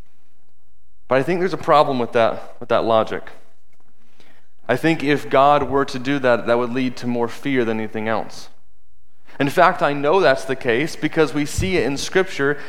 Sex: male